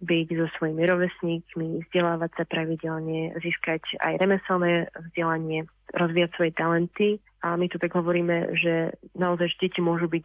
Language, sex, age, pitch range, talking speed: Slovak, female, 30-49, 165-180 Hz, 145 wpm